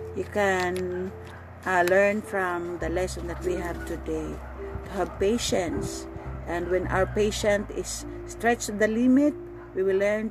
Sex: female